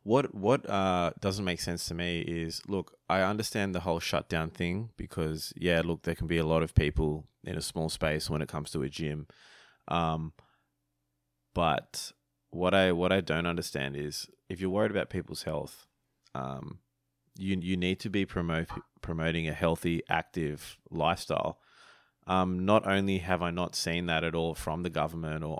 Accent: Australian